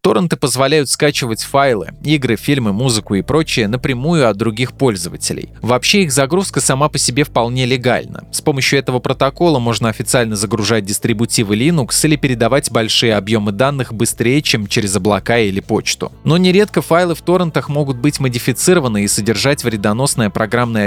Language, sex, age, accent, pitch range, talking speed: Russian, male, 20-39, native, 115-145 Hz, 150 wpm